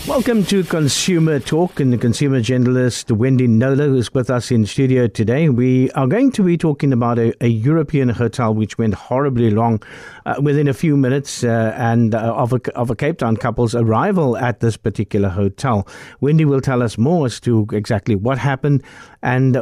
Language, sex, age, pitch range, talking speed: English, male, 50-69, 120-145 Hz, 195 wpm